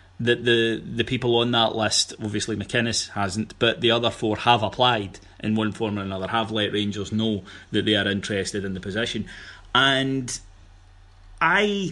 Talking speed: 170 wpm